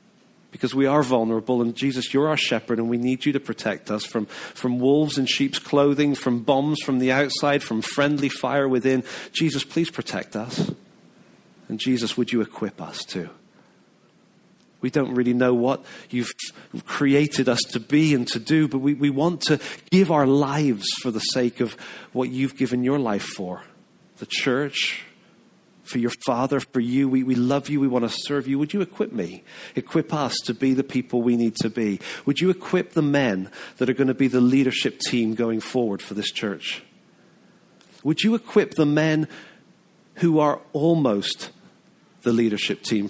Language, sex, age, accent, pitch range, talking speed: English, male, 40-59, British, 125-155 Hz, 185 wpm